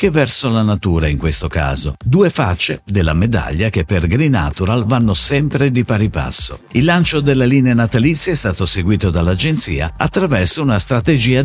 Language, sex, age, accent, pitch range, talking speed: Italian, male, 50-69, native, 90-140 Hz, 170 wpm